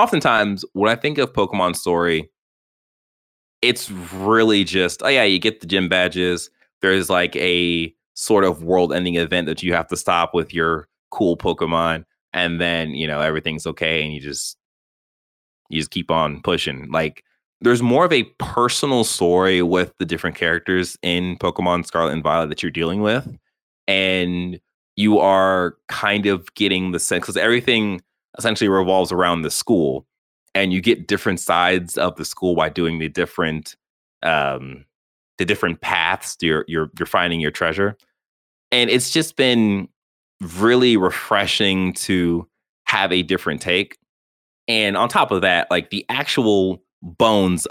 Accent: American